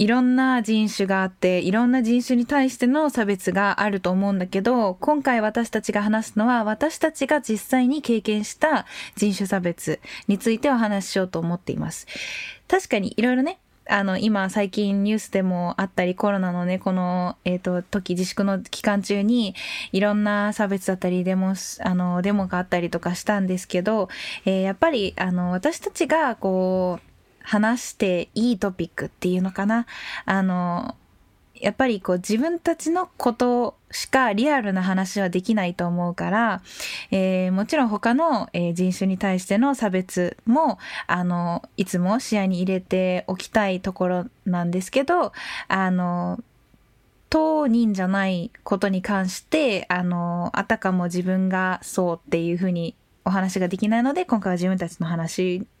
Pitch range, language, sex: 185-230 Hz, German, female